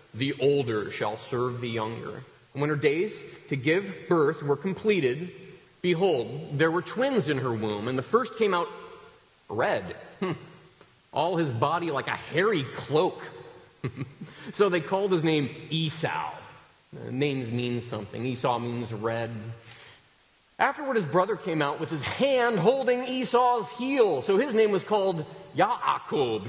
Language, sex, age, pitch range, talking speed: English, male, 30-49, 135-220 Hz, 145 wpm